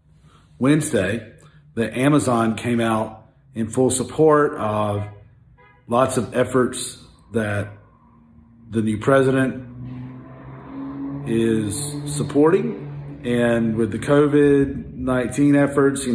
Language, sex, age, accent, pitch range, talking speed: English, male, 40-59, American, 105-130 Hz, 95 wpm